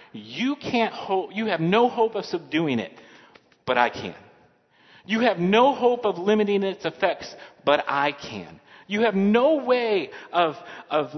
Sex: male